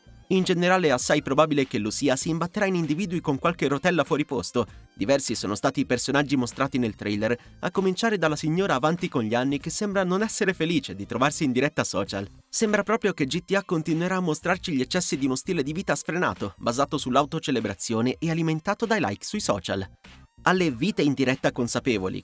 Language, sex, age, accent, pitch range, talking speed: Italian, male, 30-49, native, 125-175 Hz, 190 wpm